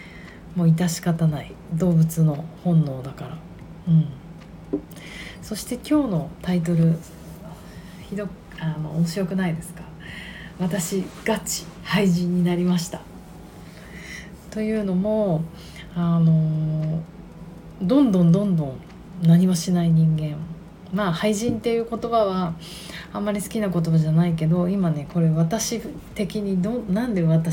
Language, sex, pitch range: Japanese, female, 165-195 Hz